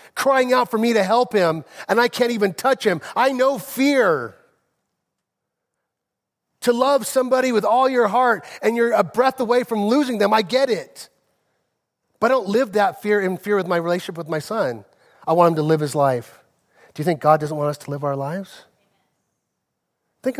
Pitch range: 155-235 Hz